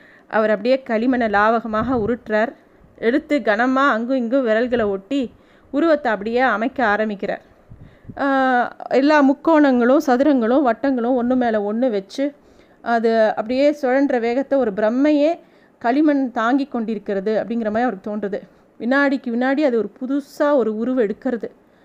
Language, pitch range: Tamil, 225-280 Hz